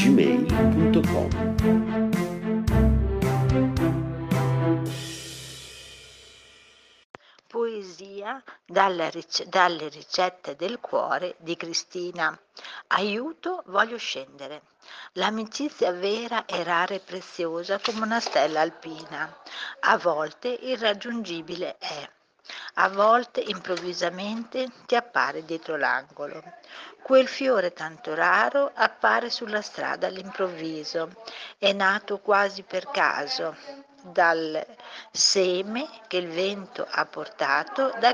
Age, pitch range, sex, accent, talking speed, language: 60-79, 170-225 Hz, female, native, 90 wpm, Italian